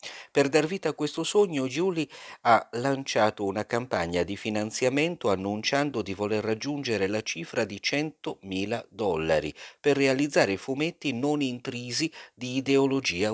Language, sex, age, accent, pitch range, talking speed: Italian, male, 50-69, native, 95-135 Hz, 130 wpm